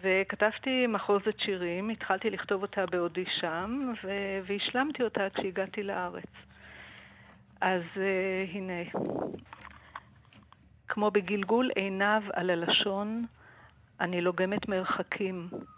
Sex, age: female, 50-69